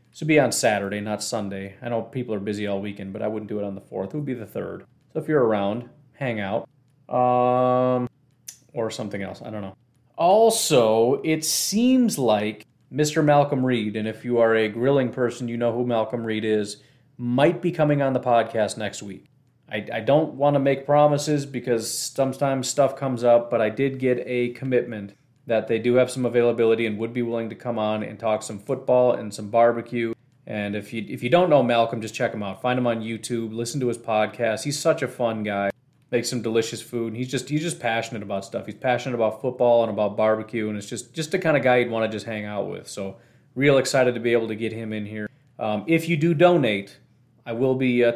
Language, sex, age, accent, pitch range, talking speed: English, male, 30-49, American, 110-130 Hz, 230 wpm